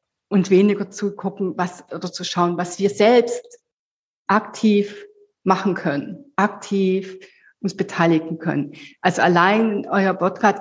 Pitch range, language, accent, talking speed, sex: 175-220 Hz, German, German, 125 wpm, female